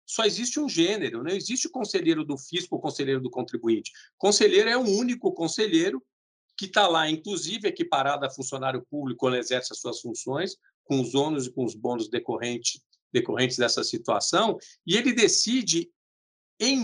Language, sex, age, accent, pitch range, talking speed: Portuguese, male, 50-69, Brazilian, 135-215 Hz, 175 wpm